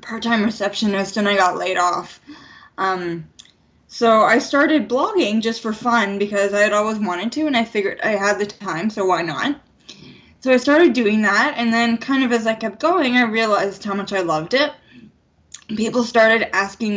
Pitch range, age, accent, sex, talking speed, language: 200-250 Hz, 10-29, American, female, 190 wpm, English